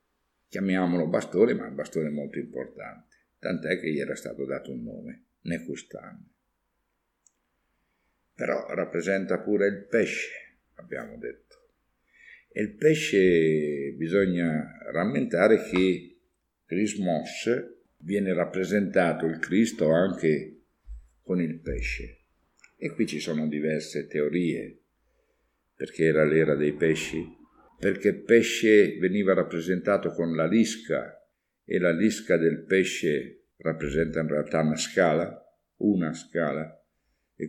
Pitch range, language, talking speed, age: 80-105 Hz, Italian, 110 wpm, 60-79